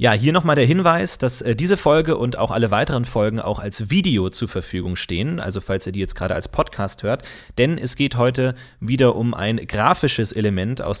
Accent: German